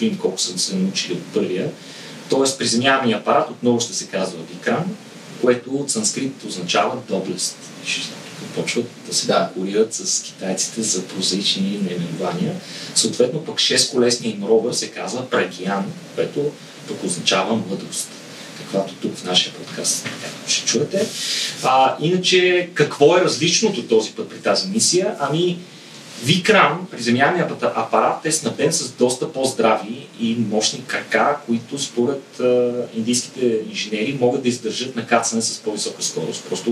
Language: Bulgarian